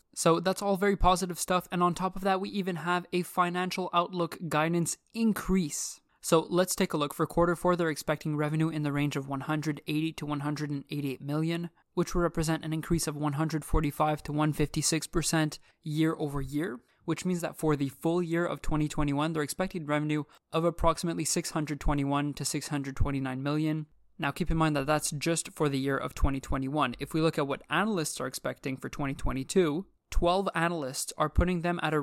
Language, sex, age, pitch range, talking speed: English, male, 20-39, 145-165 Hz, 180 wpm